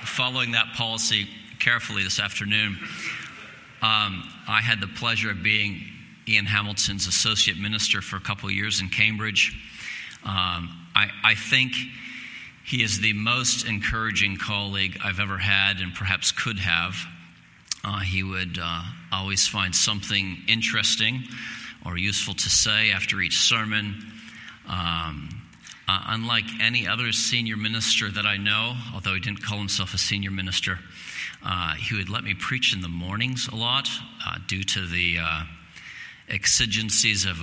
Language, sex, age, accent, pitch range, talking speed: English, male, 40-59, American, 95-115 Hz, 145 wpm